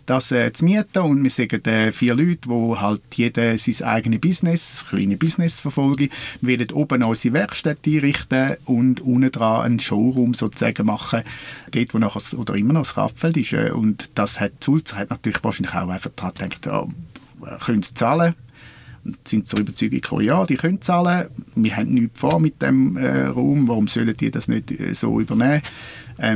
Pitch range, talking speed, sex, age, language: 115-140 Hz, 175 wpm, male, 50-69, German